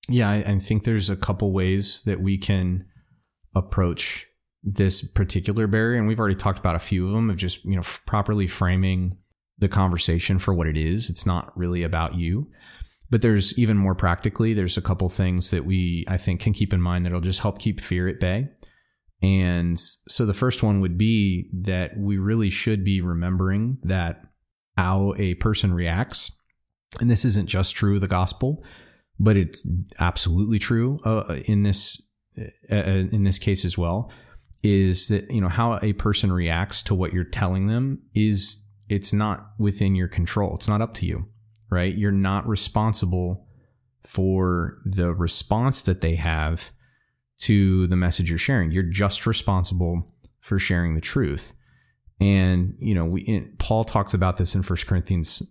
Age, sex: 30-49, male